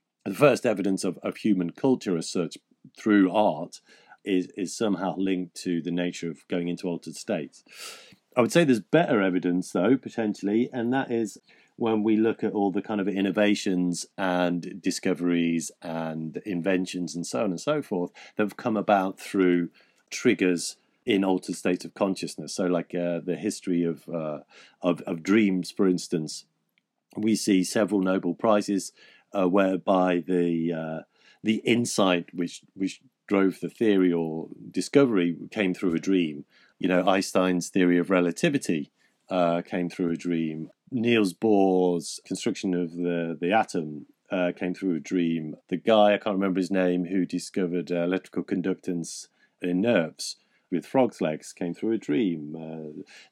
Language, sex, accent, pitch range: English, male, British, 85-100 Hz